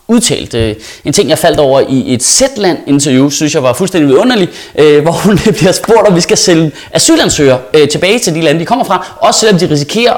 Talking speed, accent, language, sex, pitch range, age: 205 wpm, native, Danish, male, 130-215 Hz, 30-49